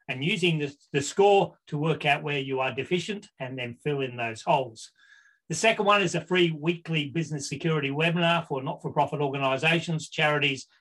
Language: English